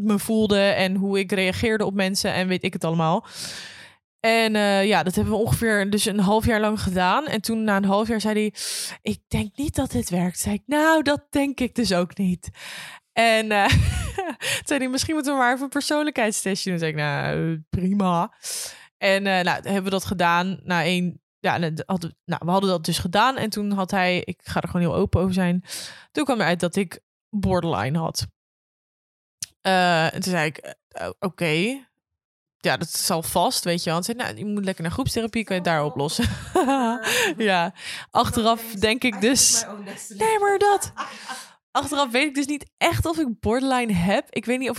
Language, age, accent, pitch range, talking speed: Dutch, 20-39, Dutch, 180-230 Hz, 195 wpm